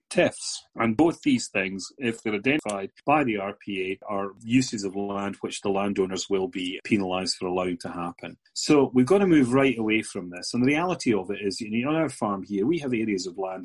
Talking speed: 225 wpm